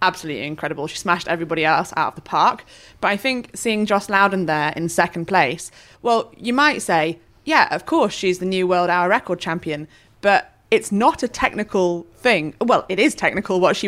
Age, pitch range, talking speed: 20-39, 160-185 Hz, 200 wpm